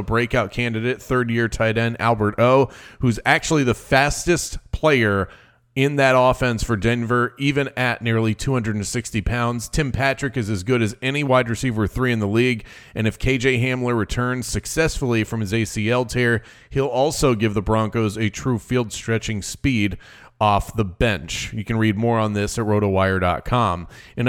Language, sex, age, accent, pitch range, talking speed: English, male, 30-49, American, 110-130 Hz, 170 wpm